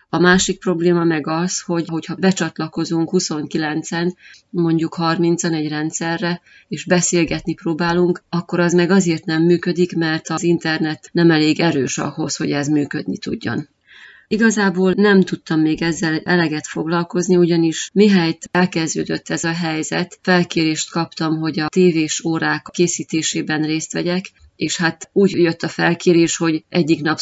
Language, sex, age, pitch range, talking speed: Hungarian, female, 30-49, 160-175 Hz, 140 wpm